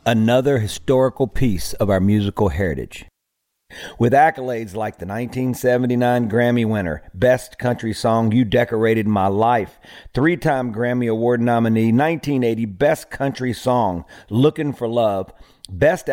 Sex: male